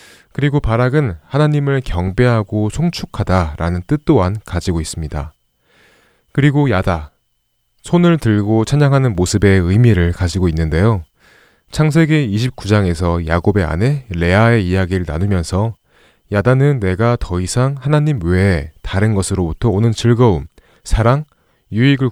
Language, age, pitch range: Korean, 30-49, 90-135 Hz